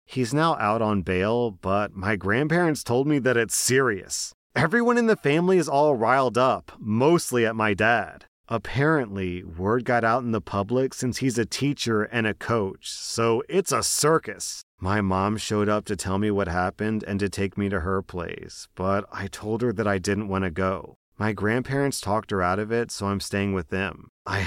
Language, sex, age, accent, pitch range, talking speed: English, male, 30-49, American, 100-120 Hz, 200 wpm